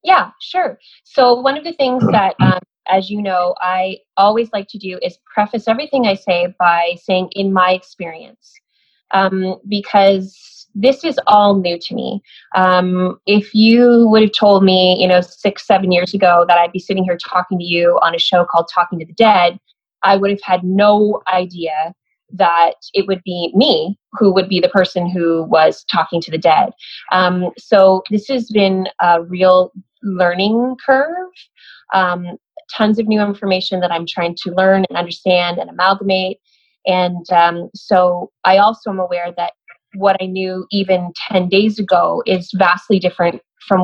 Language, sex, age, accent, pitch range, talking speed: English, female, 20-39, American, 180-210 Hz, 175 wpm